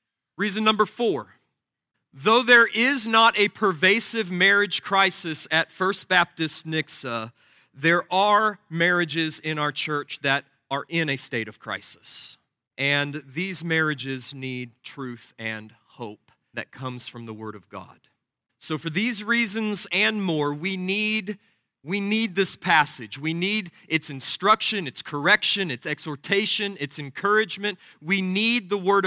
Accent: American